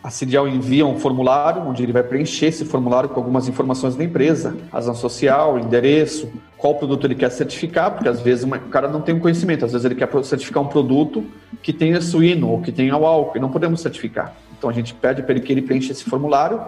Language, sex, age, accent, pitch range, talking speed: Portuguese, male, 40-59, Brazilian, 125-150 Hz, 225 wpm